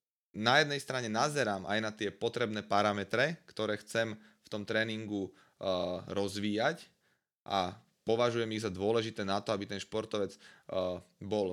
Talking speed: 135 wpm